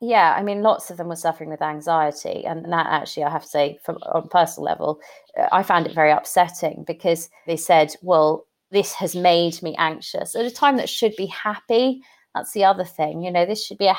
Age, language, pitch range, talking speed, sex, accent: 30-49, English, 150-190 Hz, 225 wpm, female, British